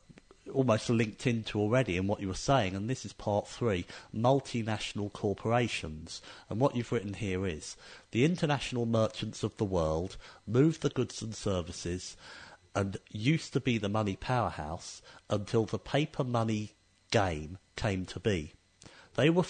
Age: 50-69